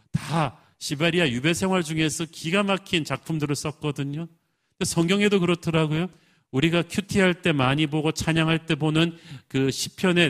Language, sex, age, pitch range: Korean, male, 40-59, 135-165 Hz